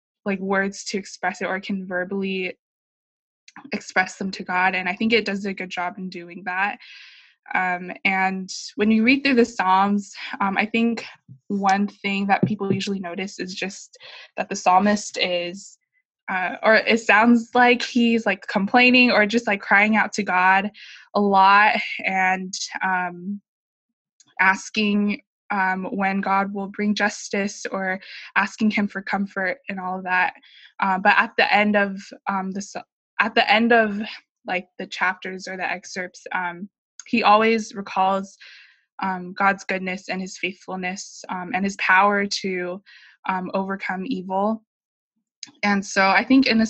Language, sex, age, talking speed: English, female, 20-39, 160 wpm